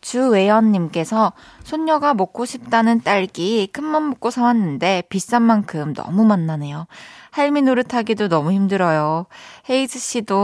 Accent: native